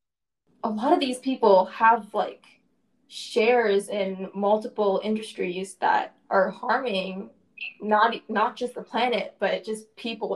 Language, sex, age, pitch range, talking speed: English, female, 10-29, 205-255 Hz, 125 wpm